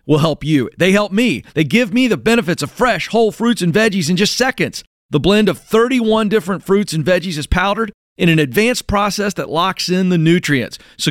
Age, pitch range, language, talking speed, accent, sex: 40-59, 150-200 Hz, English, 215 wpm, American, male